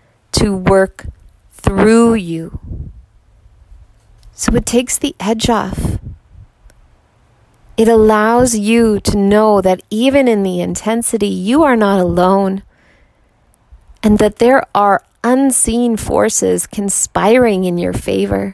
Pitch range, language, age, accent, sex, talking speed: 165-225 Hz, English, 30-49, American, female, 110 wpm